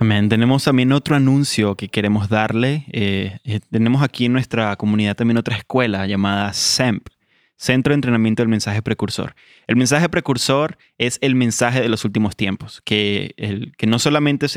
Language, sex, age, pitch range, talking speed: Spanish, male, 20-39, 110-135 Hz, 170 wpm